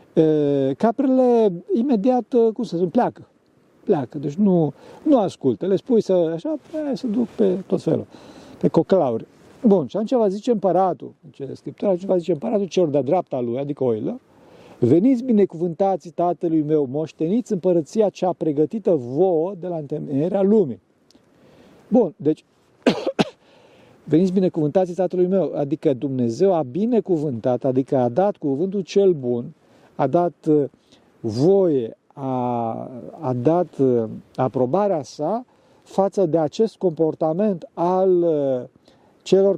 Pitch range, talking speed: 155-205 Hz, 120 wpm